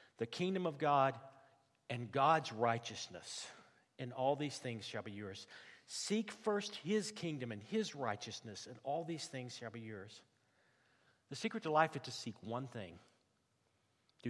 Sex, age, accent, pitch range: male, 50-69, American, 115-140 Hz